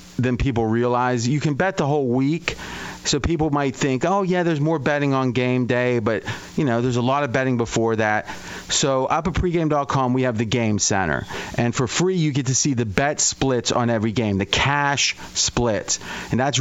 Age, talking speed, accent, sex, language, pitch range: 30-49, 210 wpm, American, male, English, 115-145 Hz